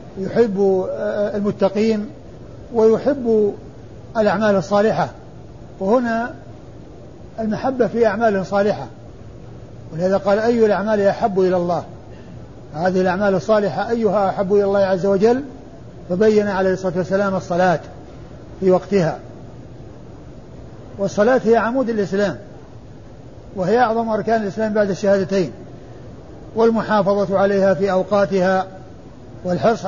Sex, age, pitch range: male, 50-69, 185-215 Hz